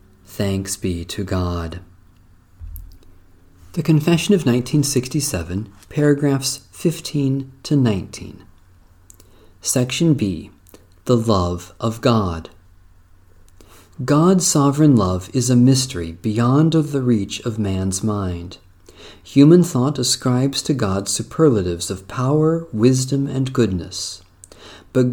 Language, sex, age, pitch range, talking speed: English, male, 40-59, 95-135 Hz, 100 wpm